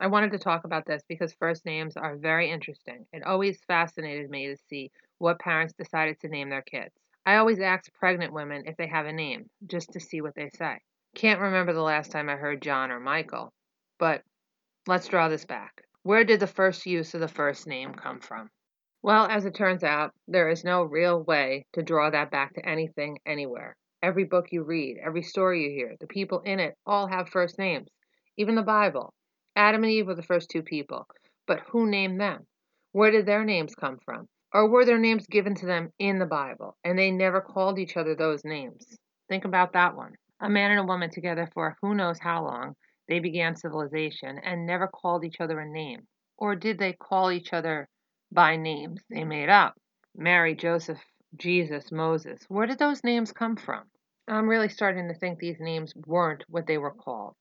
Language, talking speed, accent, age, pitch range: English, 205 wpm, American, 30-49, 160-200 Hz